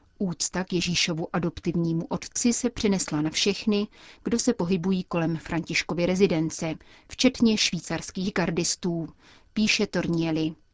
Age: 30-49